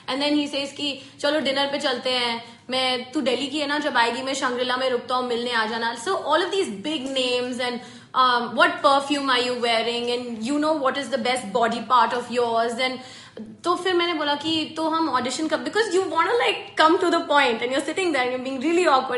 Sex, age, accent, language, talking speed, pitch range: female, 20-39, Indian, English, 245 wpm, 245-300 Hz